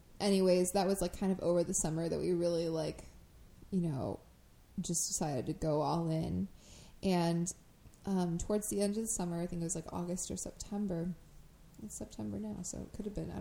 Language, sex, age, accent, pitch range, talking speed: English, female, 20-39, American, 165-200 Hz, 205 wpm